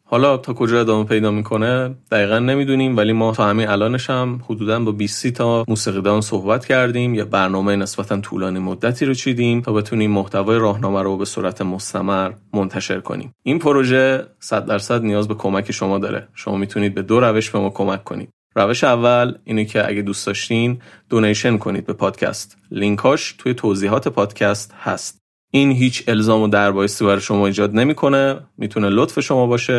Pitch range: 100-120 Hz